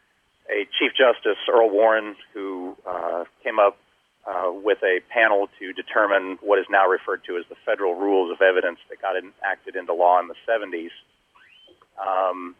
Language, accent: English, American